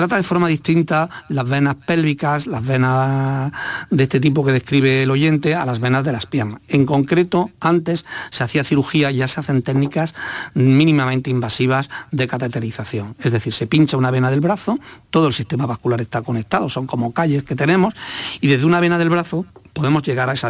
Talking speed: 195 wpm